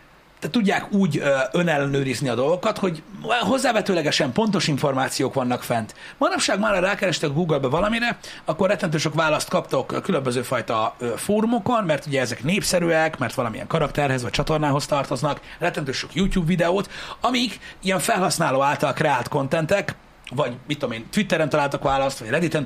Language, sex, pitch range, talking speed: Hungarian, male, 140-190 Hz, 140 wpm